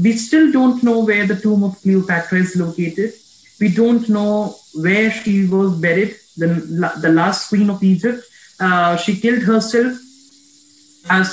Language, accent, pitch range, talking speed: English, Indian, 185-245 Hz, 155 wpm